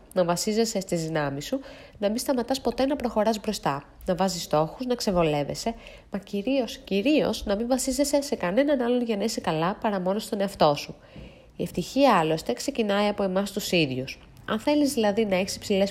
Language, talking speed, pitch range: Greek, 185 wpm, 170-245 Hz